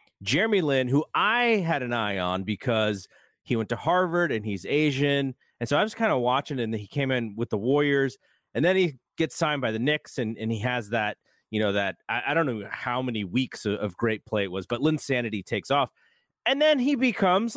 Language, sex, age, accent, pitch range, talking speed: English, male, 30-49, American, 110-160 Hz, 230 wpm